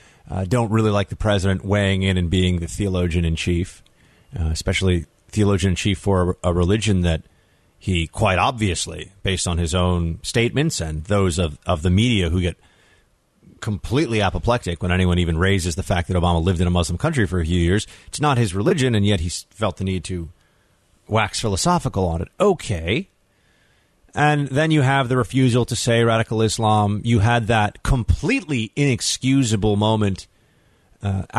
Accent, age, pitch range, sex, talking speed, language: American, 30-49, 90-120 Hz, male, 170 wpm, English